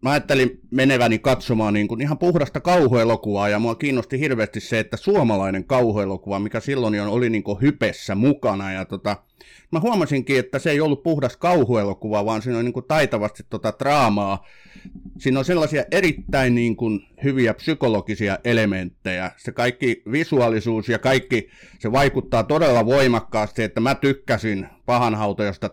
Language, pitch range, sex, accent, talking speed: Finnish, 105-135 Hz, male, native, 140 wpm